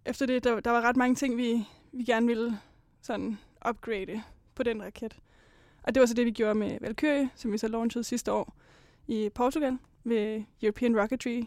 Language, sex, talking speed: Danish, female, 195 wpm